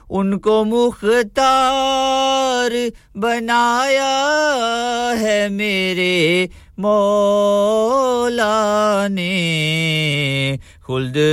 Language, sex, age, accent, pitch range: English, male, 50-69, Indian, 135-210 Hz